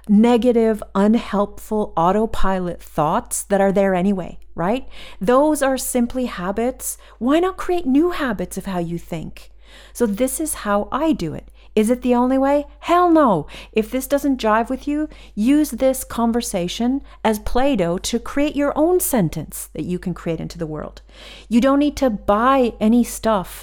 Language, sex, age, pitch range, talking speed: English, female, 40-59, 195-245 Hz, 170 wpm